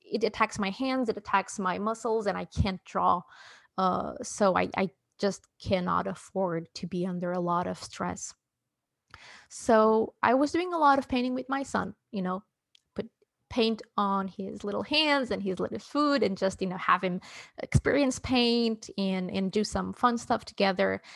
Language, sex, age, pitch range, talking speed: English, female, 20-39, 195-245 Hz, 180 wpm